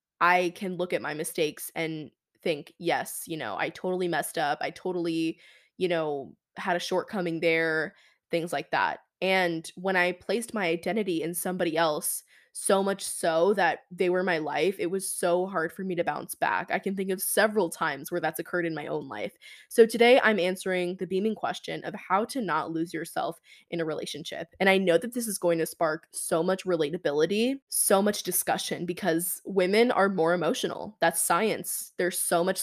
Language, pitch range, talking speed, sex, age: English, 170-195 Hz, 195 wpm, female, 20-39